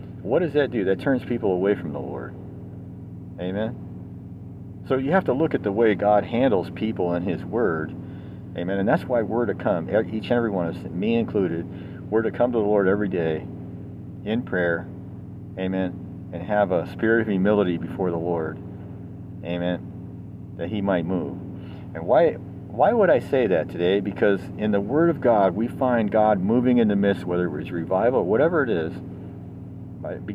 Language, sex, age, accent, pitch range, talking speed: English, male, 50-69, American, 90-115 Hz, 190 wpm